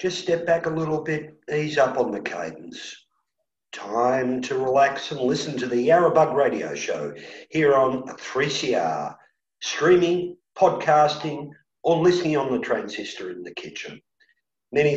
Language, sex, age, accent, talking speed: English, male, 50-69, Australian, 140 wpm